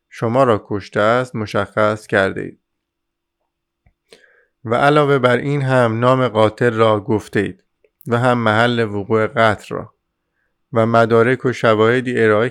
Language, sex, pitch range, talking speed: Persian, male, 105-125 Hz, 130 wpm